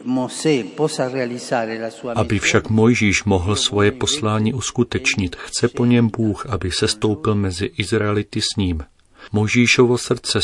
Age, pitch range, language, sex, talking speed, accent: 40-59, 95-110 Hz, Czech, male, 115 wpm, native